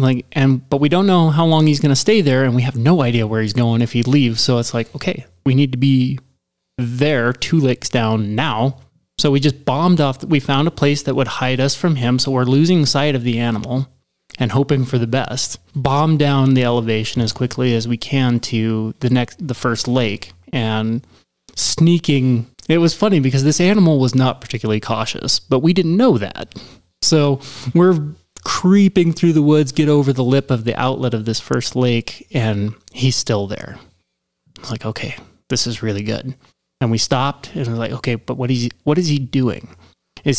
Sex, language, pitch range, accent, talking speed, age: male, English, 115-145 Hz, American, 210 wpm, 20-39